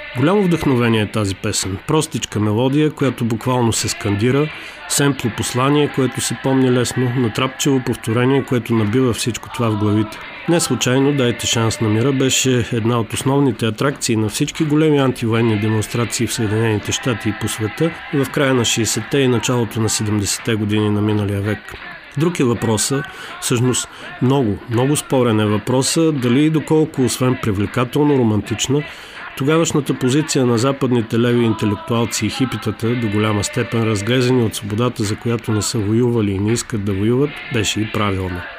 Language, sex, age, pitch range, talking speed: Bulgarian, male, 40-59, 110-135 Hz, 155 wpm